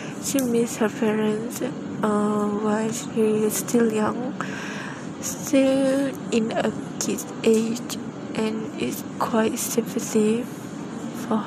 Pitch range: 220-250 Hz